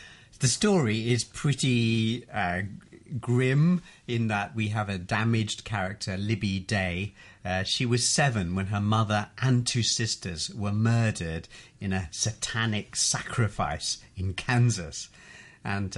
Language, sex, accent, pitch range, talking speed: English, male, British, 100-125 Hz, 130 wpm